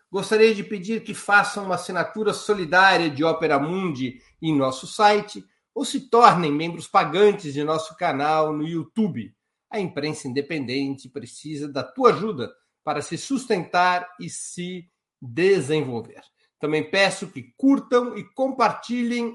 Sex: male